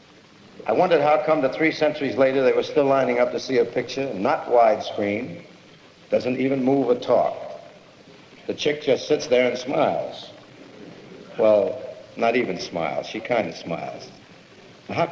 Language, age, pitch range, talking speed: English, 70-89, 110-140 Hz, 160 wpm